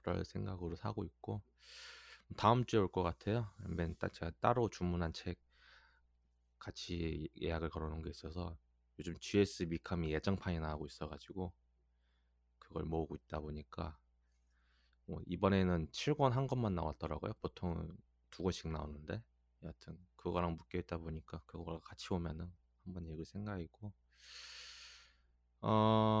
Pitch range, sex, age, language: 75-105 Hz, male, 20-39, Korean